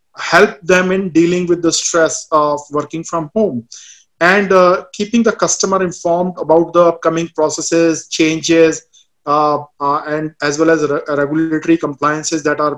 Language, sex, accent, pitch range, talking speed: English, male, Indian, 150-175 Hz, 155 wpm